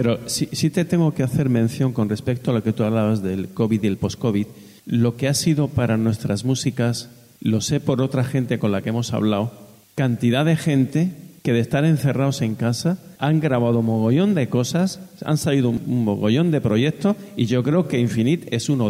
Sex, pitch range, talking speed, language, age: male, 115-145 Hz, 205 wpm, Spanish, 50-69